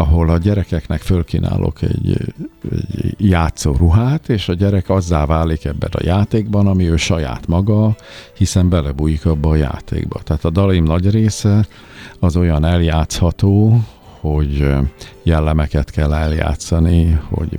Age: 50-69